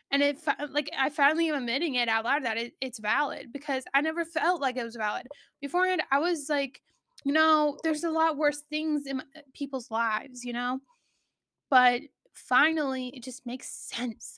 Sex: female